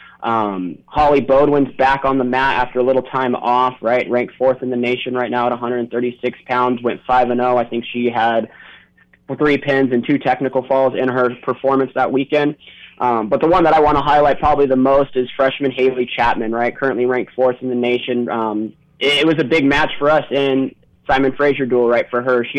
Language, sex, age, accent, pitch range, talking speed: English, male, 20-39, American, 120-135 Hz, 220 wpm